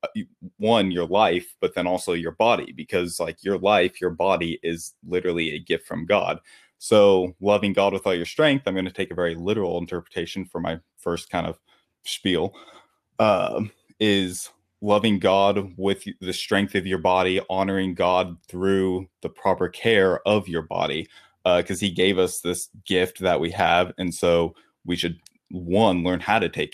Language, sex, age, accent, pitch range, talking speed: English, male, 20-39, American, 90-100 Hz, 175 wpm